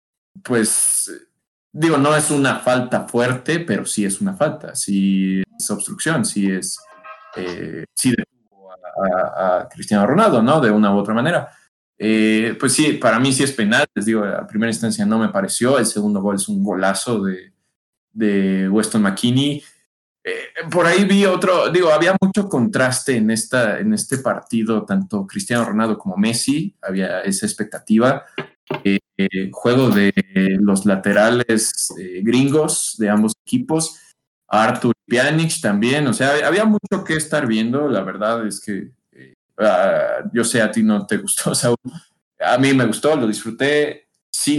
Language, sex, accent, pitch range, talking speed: Spanish, male, Mexican, 105-145 Hz, 160 wpm